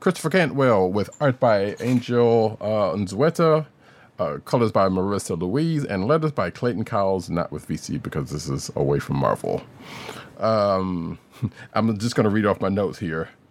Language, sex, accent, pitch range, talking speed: English, male, American, 90-125 Hz, 165 wpm